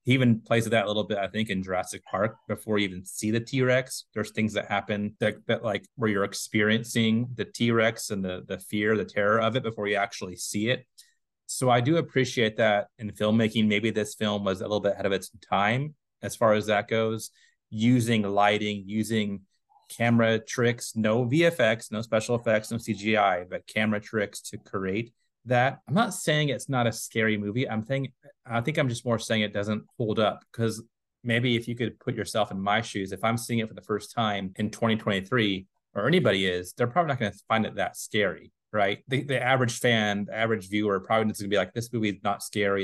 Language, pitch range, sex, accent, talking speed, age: English, 105-120 Hz, male, American, 220 wpm, 30-49